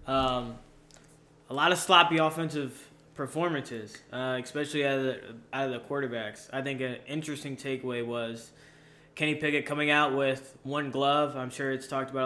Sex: male